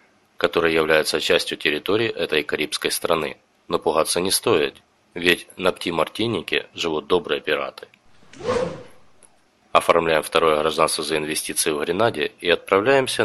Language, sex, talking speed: Russian, male, 120 wpm